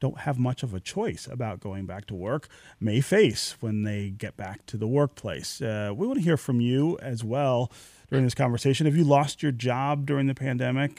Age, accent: 30-49, American